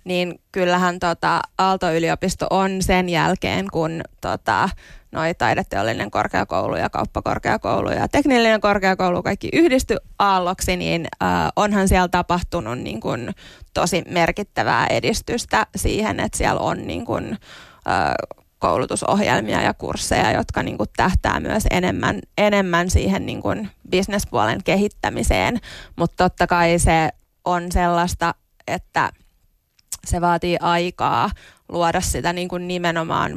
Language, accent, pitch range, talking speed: Finnish, native, 170-200 Hz, 115 wpm